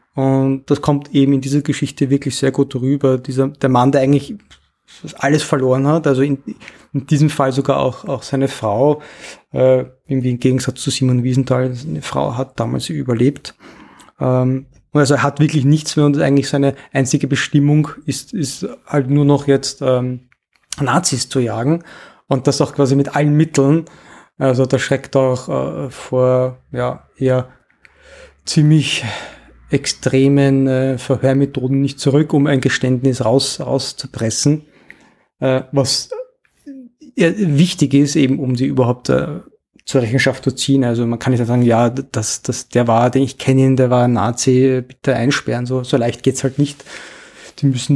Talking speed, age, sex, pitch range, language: 165 wpm, 20-39, male, 130-145 Hz, German